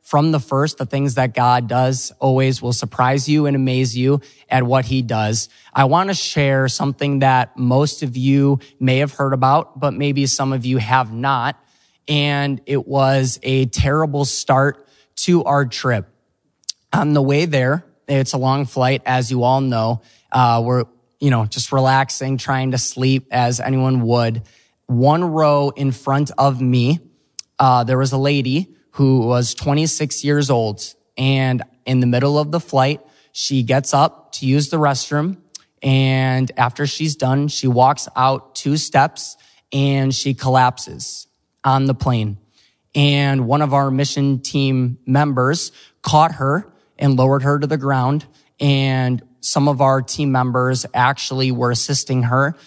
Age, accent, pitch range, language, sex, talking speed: 20-39, American, 130-140 Hz, English, male, 160 wpm